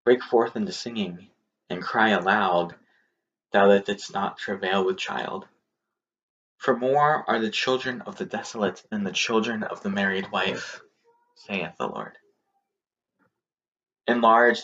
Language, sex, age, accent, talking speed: English, male, 20-39, American, 135 wpm